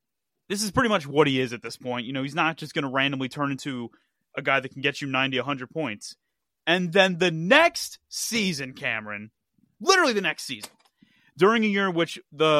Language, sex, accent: English, male, American